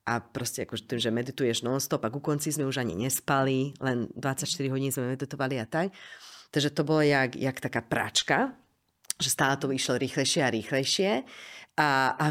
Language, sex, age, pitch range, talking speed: Slovak, female, 30-49, 135-165 Hz, 175 wpm